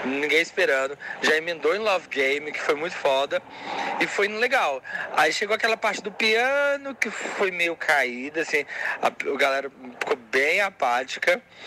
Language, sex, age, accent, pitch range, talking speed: Portuguese, male, 20-39, Brazilian, 140-215 Hz, 160 wpm